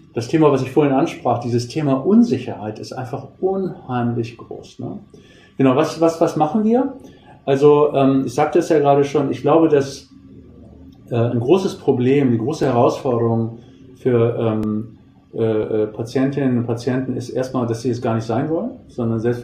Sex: male